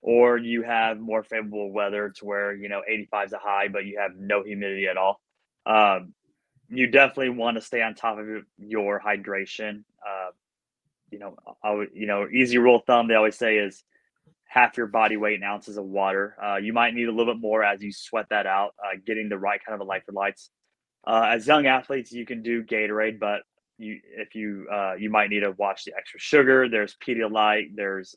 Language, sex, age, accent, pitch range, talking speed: English, male, 20-39, American, 100-115 Hz, 215 wpm